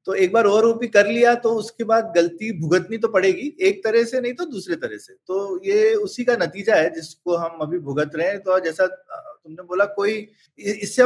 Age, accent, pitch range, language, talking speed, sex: 30-49, native, 165-235 Hz, Hindi, 215 wpm, male